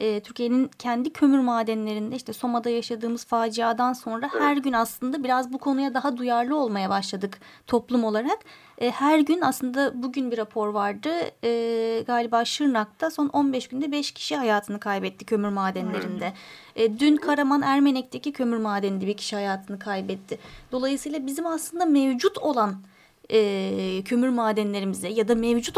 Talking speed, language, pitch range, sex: 135 wpm, Turkish, 225-290 Hz, female